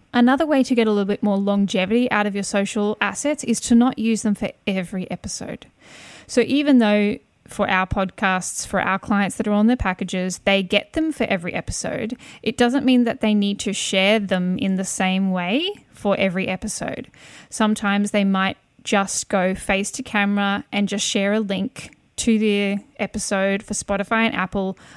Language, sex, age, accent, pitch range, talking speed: English, female, 10-29, Australian, 195-225 Hz, 185 wpm